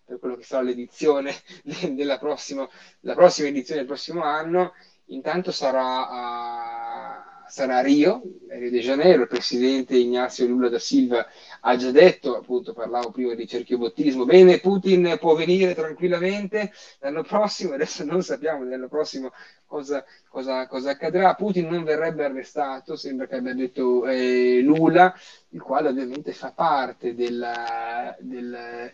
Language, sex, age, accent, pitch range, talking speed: Italian, male, 30-49, native, 120-145 Hz, 135 wpm